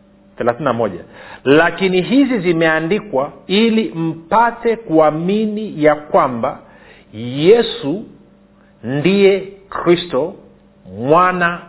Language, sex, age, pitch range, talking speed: Swahili, male, 50-69, 155-200 Hz, 70 wpm